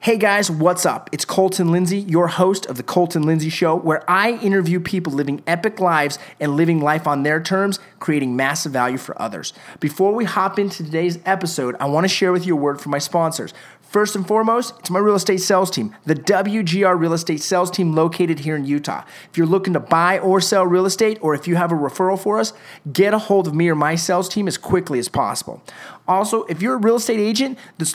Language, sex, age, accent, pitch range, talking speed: English, male, 30-49, American, 155-195 Hz, 225 wpm